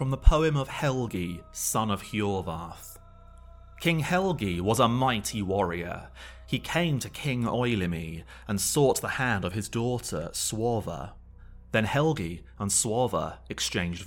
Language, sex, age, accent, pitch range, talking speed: English, male, 30-49, British, 85-120 Hz, 135 wpm